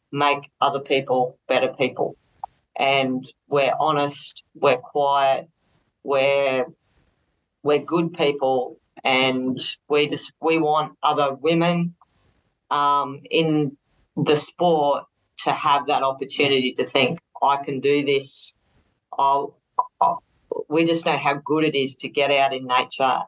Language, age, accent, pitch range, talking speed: English, 40-59, Australian, 130-150 Hz, 120 wpm